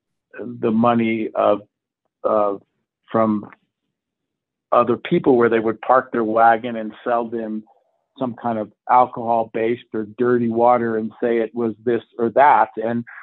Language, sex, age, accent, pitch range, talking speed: English, male, 50-69, American, 115-140 Hz, 140 wpm